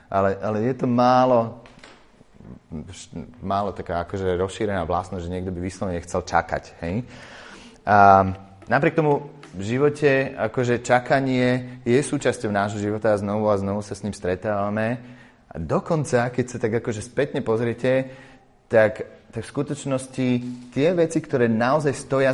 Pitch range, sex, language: 95-125 Hz, male, Slovak